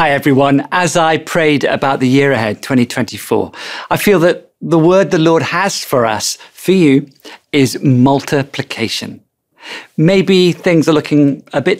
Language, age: English, 40-59